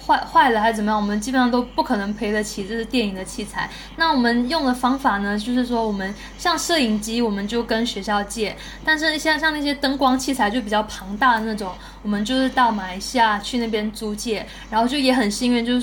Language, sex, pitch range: Chinese, female, 210-260 Hz